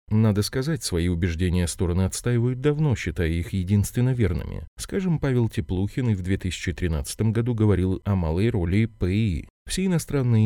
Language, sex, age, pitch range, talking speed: Russian, male, 30-49, 85-115 Hz, 145 wpm